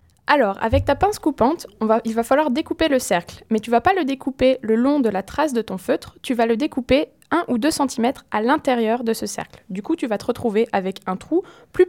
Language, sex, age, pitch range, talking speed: French, female, 20-39, 215-300 Hz, 255 wpm